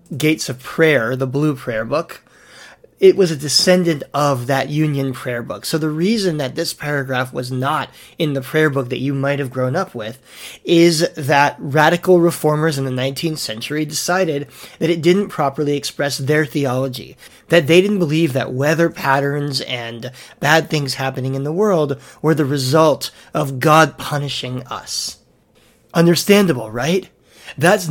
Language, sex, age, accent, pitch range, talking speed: English, male, 30-49, American, 130-160 Hz, 160 wpm